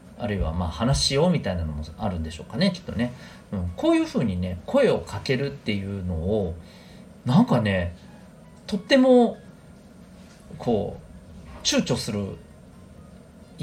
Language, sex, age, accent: Japanese, male, 40-59, native